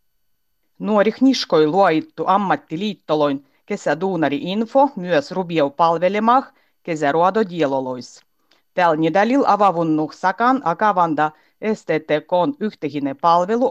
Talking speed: 85 wpm